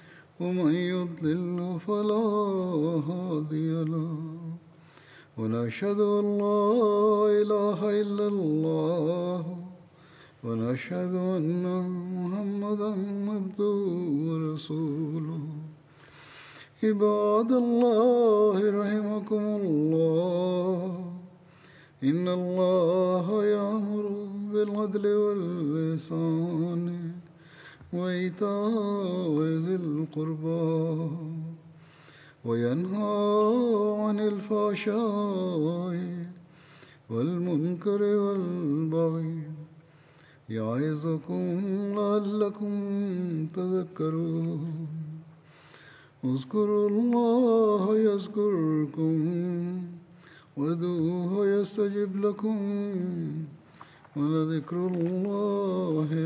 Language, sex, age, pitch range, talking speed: Bulgarian, male, 50-69, 160-205 Hz, 35 wpm